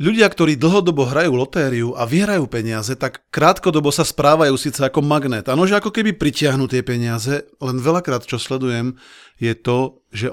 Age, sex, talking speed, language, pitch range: 40-59, male, 170 wpm, Slovak, 120-160 Hz